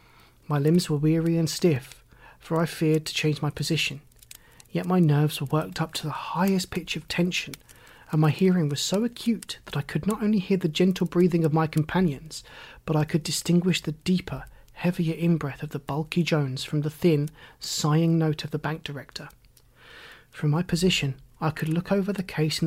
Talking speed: 195 wpm